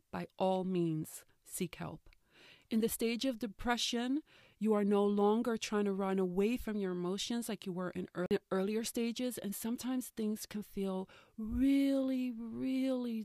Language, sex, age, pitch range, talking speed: English, female, 40-59, 195-235 Hz, 155 wpm